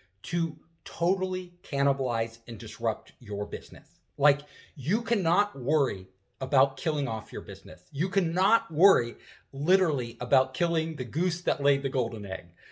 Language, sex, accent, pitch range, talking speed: English, male, American, 130-190 Hz, 135 wpm